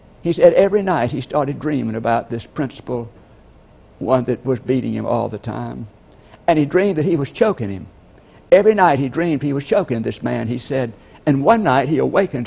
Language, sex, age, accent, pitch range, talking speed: English, male, 60-79, American, 115-155 Hz, 200 wpm